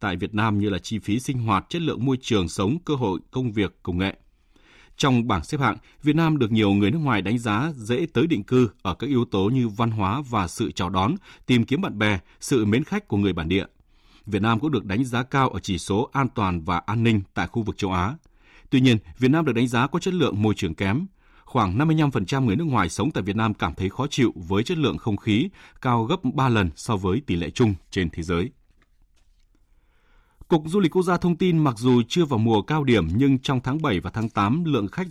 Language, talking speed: Vietnamese, 250 wpm